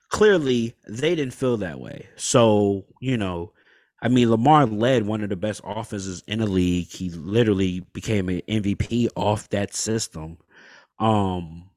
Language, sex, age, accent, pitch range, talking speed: English, male, 20-39, American, 95-120 Hz, 155 wpm